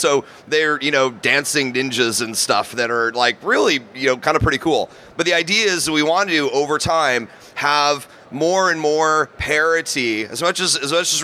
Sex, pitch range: male, 130-165 Hz